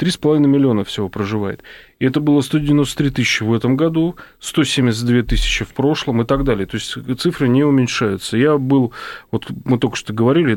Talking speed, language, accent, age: 175 wpm, Russian, native, 30-49